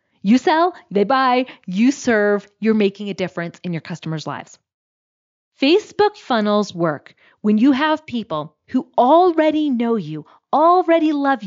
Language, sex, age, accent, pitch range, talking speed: English, female, 30-49, American, 180-255 Hz, 140 wpm